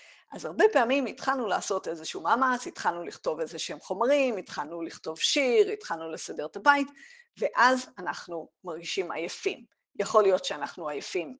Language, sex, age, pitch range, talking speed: Hebrew, female, 50-69, 190-300 Hz, 135 wpm